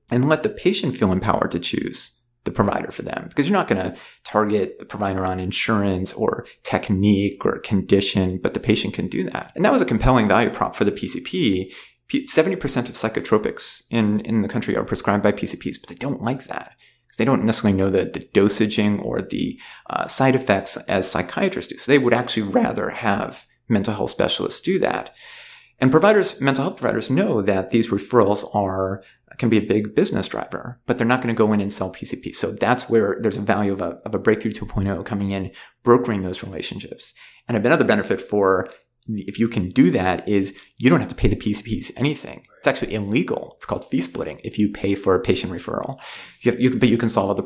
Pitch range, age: 100-115 Hz, 30-49